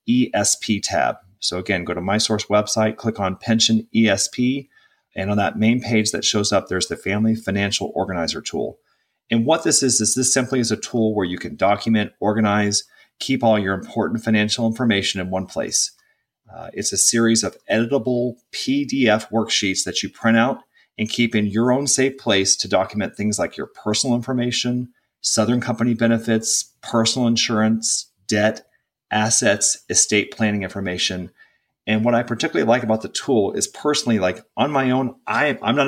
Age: 30-49